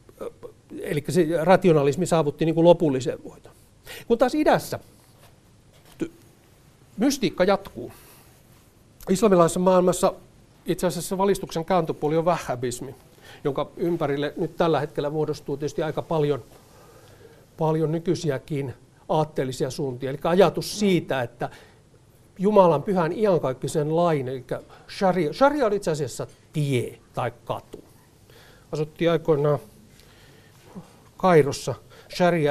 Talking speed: 100 wpm